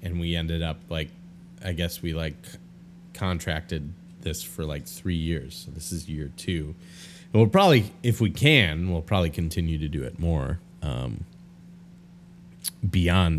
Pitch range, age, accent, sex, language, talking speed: 85-120 Hz, 30-49, American, male, English, 155 wpm